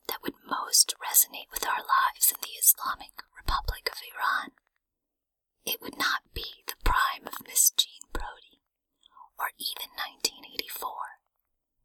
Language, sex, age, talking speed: English, female, 30-49, 130 wpm